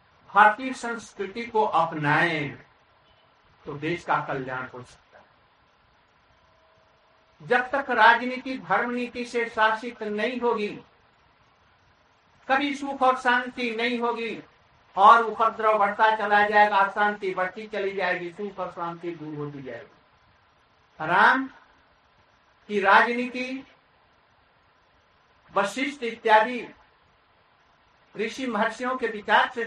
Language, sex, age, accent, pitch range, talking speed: Hindi, male, 60-79, native, 195-235 Hz, 105 wpm